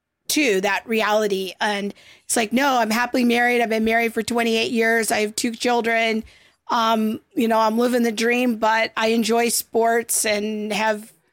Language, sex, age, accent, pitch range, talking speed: English, female, 40-59, American, 215-245 Hz, 170 wpm